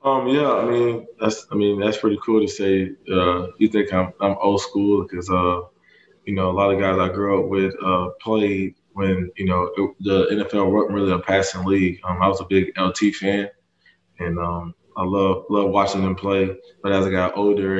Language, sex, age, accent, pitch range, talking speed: English, male, 20-39, American, 95-105 Hz, 215 wpm